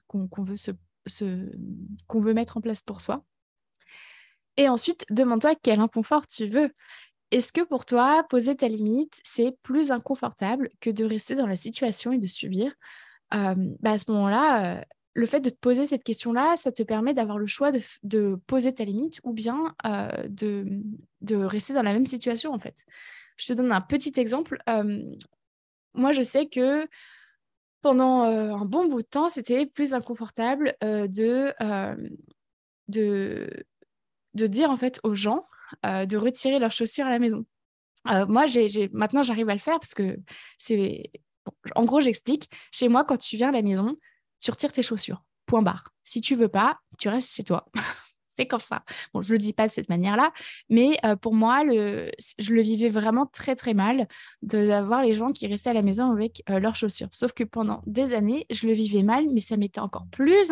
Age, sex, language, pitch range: 20-39, female, French, 215-265 Hz